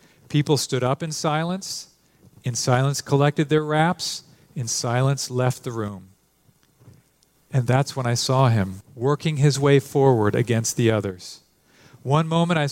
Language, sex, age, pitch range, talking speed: English, male, 40-59, 120-145 Hz, 145 wpm